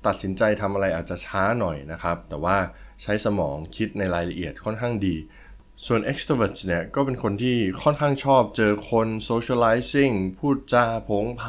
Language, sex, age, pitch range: Thai, male, 20-39, 85-120 Hz